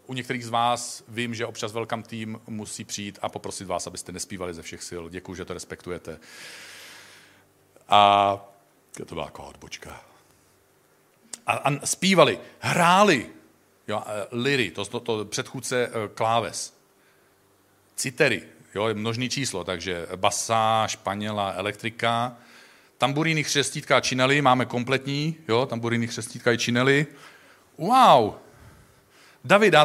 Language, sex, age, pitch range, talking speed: Czech, male, 40-59, 115-150 Hz, 125 wpm